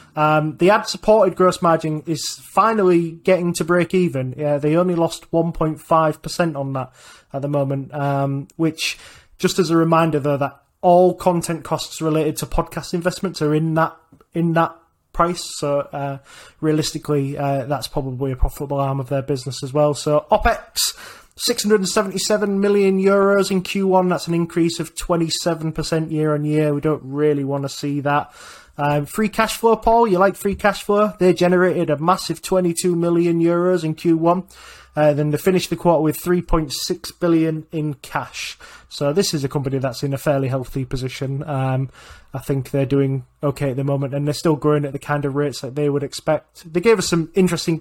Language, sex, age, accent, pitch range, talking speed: English, male, 20-39, British, 145-175 Hz, 185 wpm